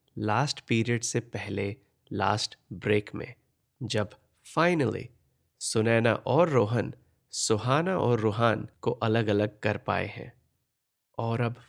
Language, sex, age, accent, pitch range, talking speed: Hindi, male, 30-49, native, 105-130 Hz, 120 wpm